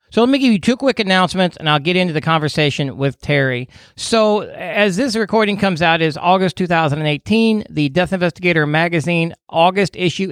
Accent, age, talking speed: American, 40-59, 185 wpm